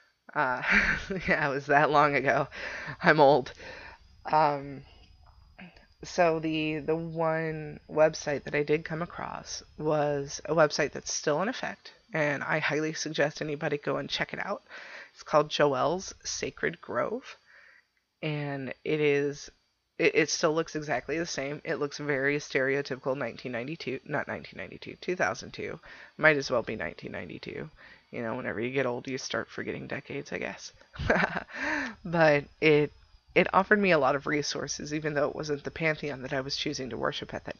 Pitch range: 130-155 Hz